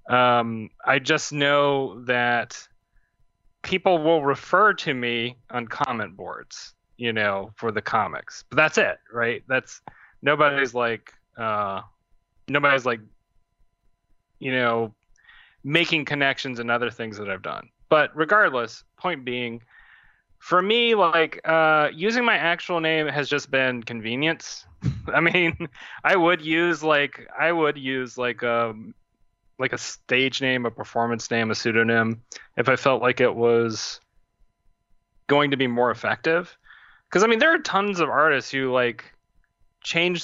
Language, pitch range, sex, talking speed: English, 115-145 Hz, male, 145 wpm